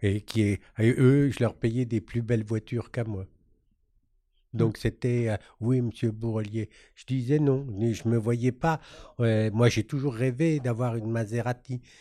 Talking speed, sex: 185 wpm, male